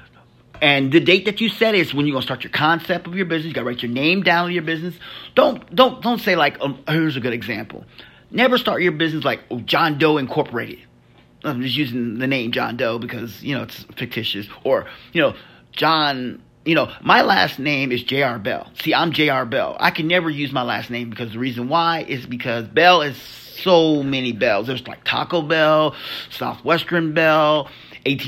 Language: English